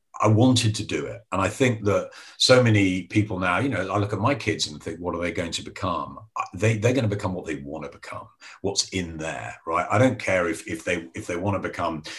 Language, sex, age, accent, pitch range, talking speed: English, male, 40-59, British, 90-115 Hz, 260 wpm